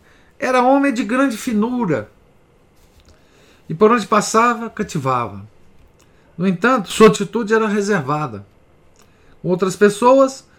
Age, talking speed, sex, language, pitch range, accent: 50-69, 110 wpm, male, Portuguese, 145-210 Hz, Brazilian